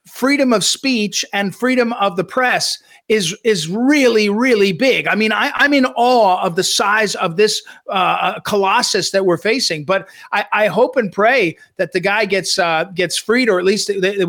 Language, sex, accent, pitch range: English, male, American, 195-255 Hz